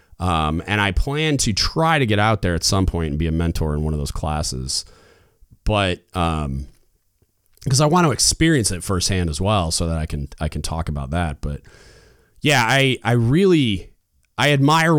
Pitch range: 85-115 Hz